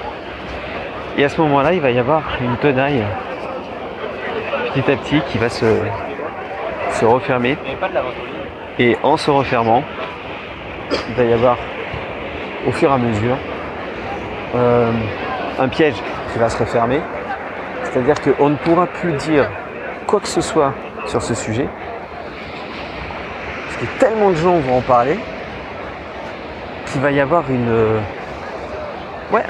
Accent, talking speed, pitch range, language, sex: French, 135 wpm, 120-155 Hz, French, male